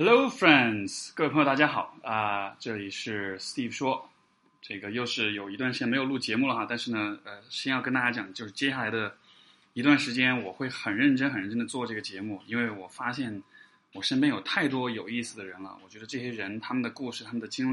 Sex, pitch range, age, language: male, 105-130 Hz, 20-39, Chinese